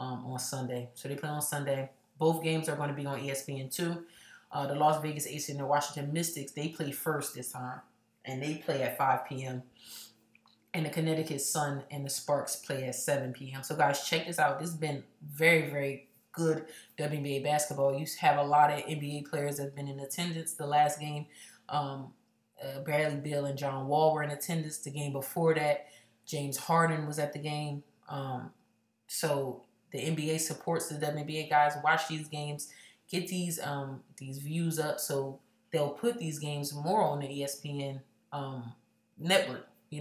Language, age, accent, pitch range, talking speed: English, 30-49, American, 140-155 Hz, 185 wpm